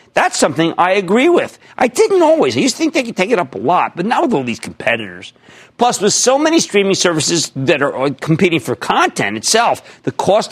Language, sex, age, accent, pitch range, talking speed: English, male, 50-69, American, 140-210 Hz, 220 wpm